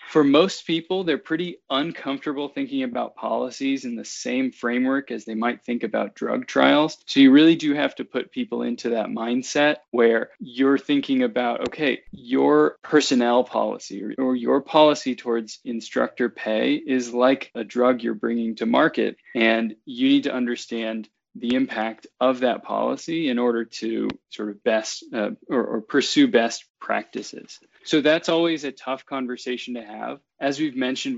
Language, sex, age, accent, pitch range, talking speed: English, male, 20-39, American, 115-150 Hz, 165 wpm